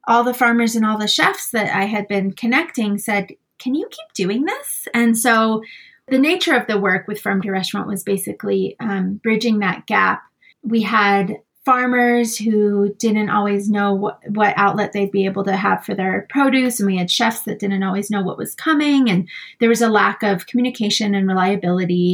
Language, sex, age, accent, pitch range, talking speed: English, female, 30-49, American, 200-230 Hz, 200 wpm